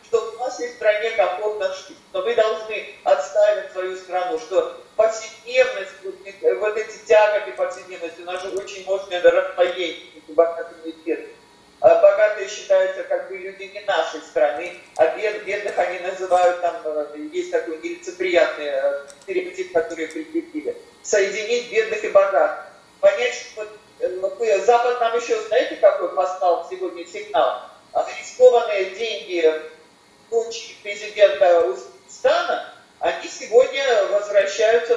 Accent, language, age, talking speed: native, Russian, 40-59, 125 wpm